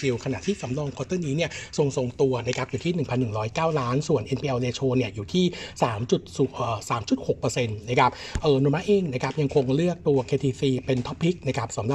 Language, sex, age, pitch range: Thai, male, 60-79, 125-155 Hz